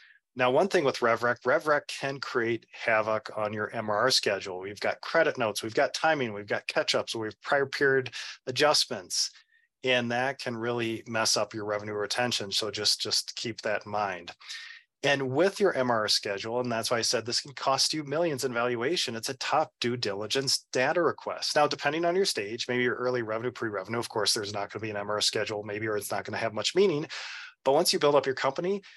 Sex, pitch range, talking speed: male, 110-140 Hz, 215 wpm